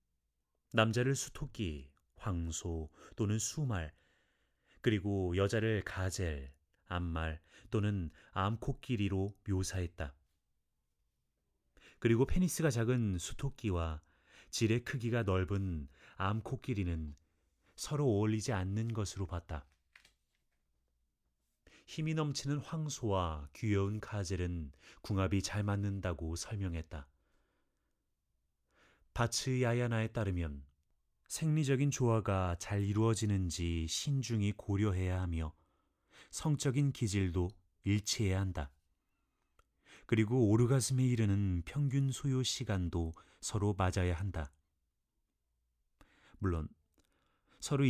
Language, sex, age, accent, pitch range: Korean, male, 30-49, native, 80-115 Hz